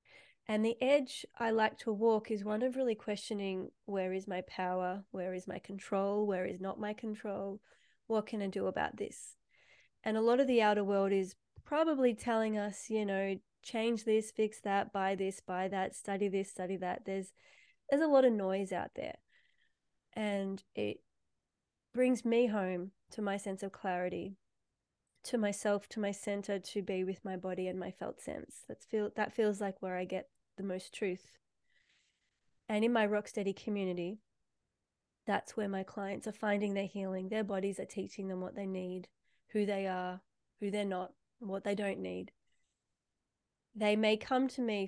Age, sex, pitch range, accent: 20-39, female, 185-215 Hz, Australian